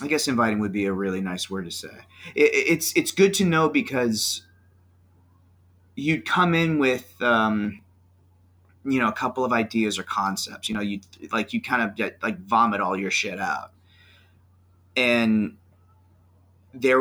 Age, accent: 30-49, American